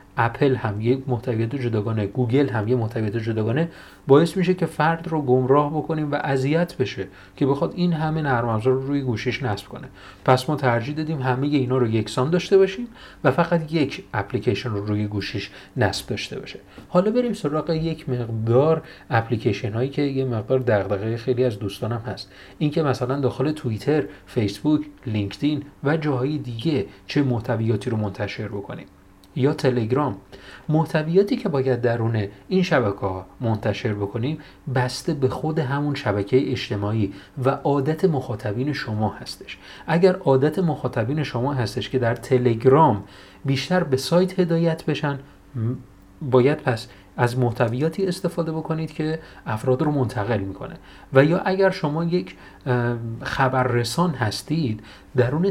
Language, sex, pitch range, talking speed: Persian, male, 110-150 Hz, 145 wpm